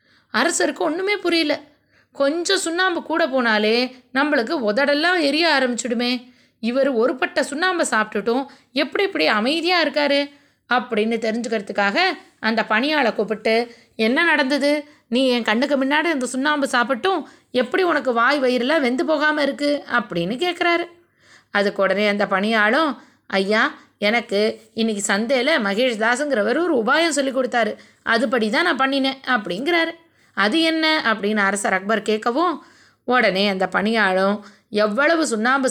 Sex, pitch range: female, 220-300 Hz